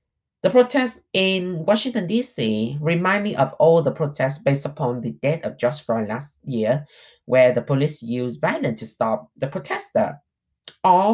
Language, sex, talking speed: English, male, 160 wpm